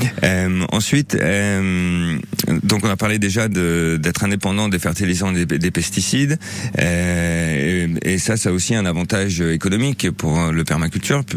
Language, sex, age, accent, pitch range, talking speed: French, male, 40-59, French, 80-100 Hz, 160 wpm